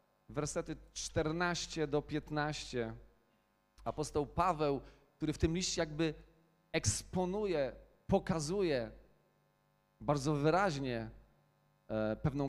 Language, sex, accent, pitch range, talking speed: Polish, male, native, 120-175 Hz, 75 wpm